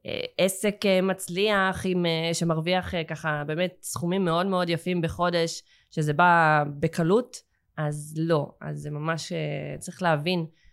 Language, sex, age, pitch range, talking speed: Hebrew, female, 20-39, 150-180 Hz, 140 wpm